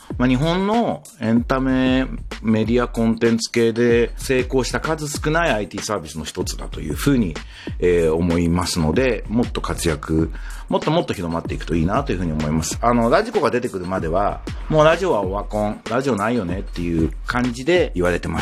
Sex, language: male, Japanese